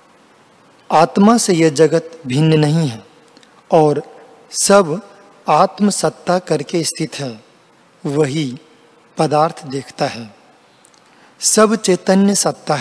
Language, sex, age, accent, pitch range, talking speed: Hindi, male, 40-59, native, 150-185 Hz, 100 wpm